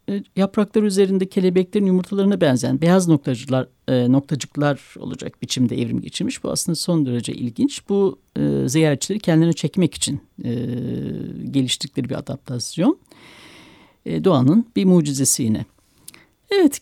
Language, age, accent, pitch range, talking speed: Turkish, 60-79, native, 140-200 Hz, 115 wpm